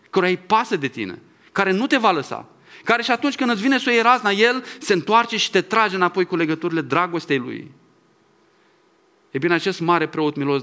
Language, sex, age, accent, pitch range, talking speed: English, male, 20-39, Romanian, 160-220 Hz, 200 wpm